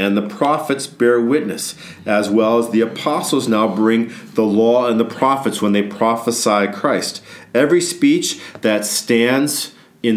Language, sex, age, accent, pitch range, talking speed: English, male, 40-59, American, 110-135 Hz, 155 wpm